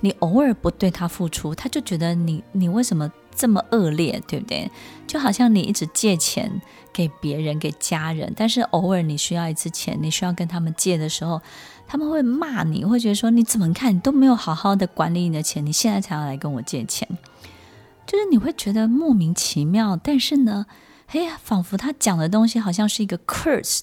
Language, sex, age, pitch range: Chinese, female, 20-39, 165-225 Hz